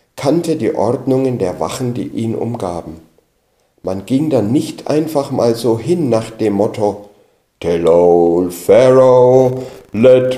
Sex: male